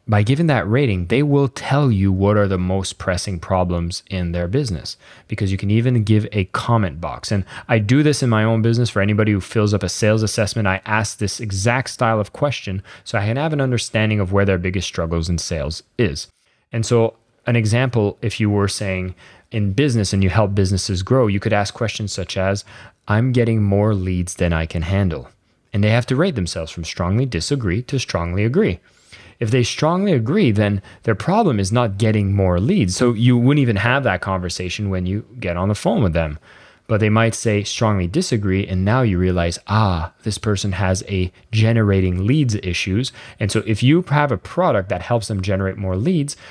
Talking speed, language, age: 210 wpm, English, 20-39